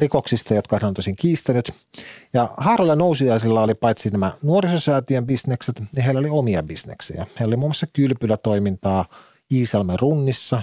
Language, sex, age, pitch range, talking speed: Finnish, male, 40-59, 105-135 Hz, 140 wpm